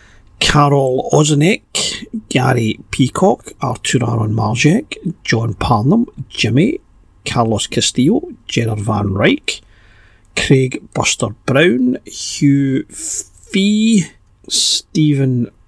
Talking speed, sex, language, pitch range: 75 wpm, male, English, 115-160 Hz